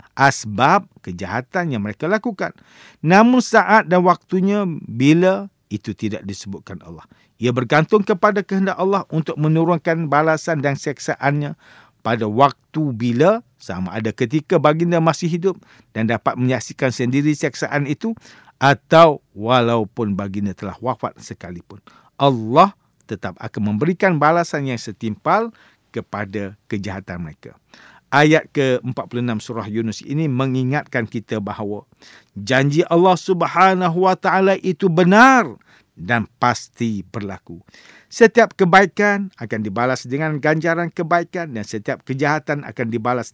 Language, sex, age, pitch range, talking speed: English, male, 50-69, 110-170 Hz, 115 wpm